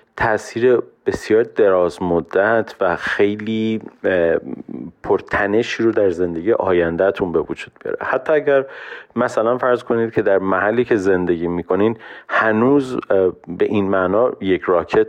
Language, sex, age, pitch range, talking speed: Persian, male, 40-59, 90-120 Hz, 125 wpm